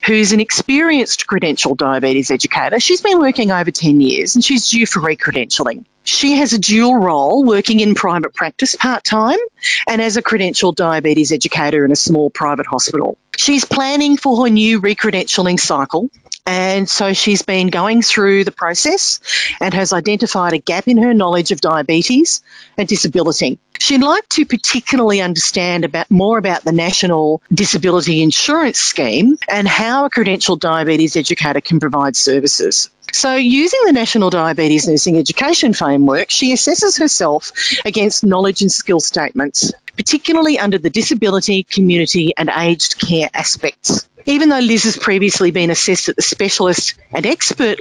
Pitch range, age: 170-255 Hz, 40-59